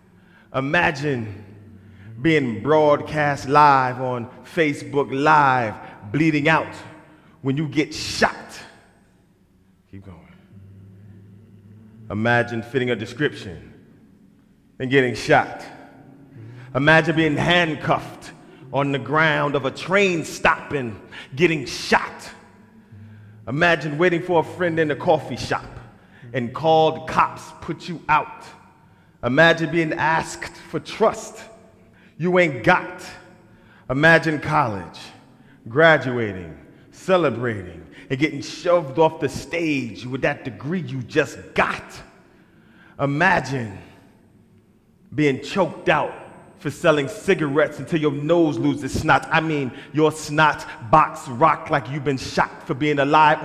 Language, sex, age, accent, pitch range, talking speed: English, male, 30-49, American, 120-160 Hz, 110 wpm